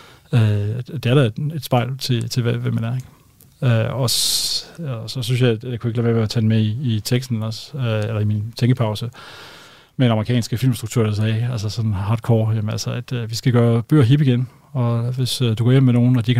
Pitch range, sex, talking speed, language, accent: 115-130 Hz, male, 225 wpm, Danish, native